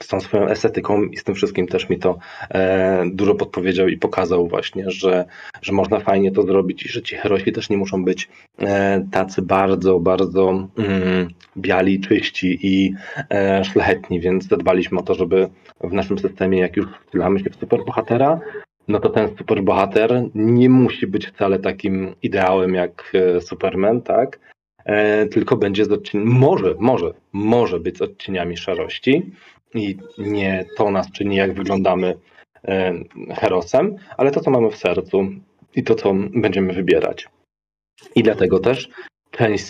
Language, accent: Polish, native